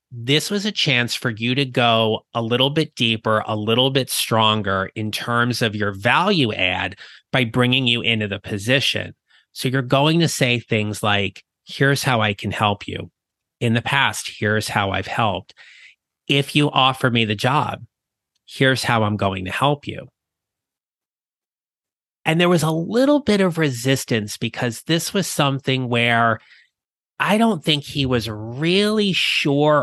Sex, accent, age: male, American, 30-49